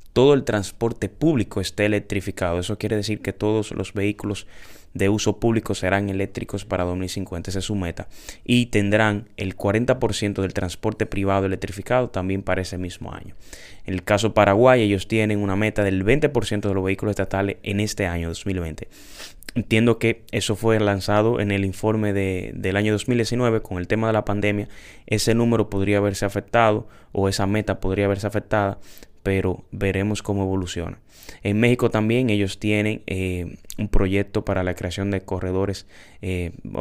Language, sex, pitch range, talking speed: Spanish, male, 95-110 Hz, 170 wpm